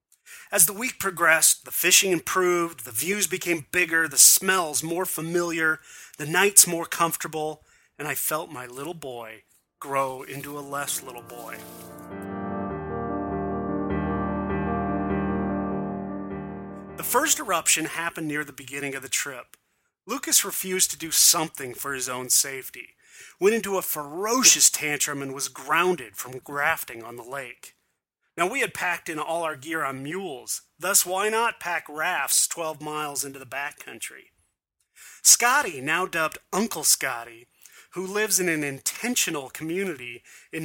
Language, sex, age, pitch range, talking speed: English, male, 30-49, 130-175 Hz, 140 wpm